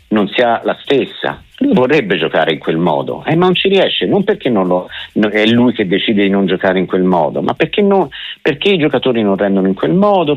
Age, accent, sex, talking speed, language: 50-69, native, male, 230 wpm, Italian